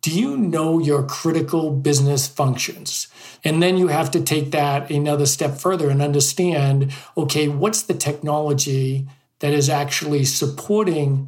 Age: 50-69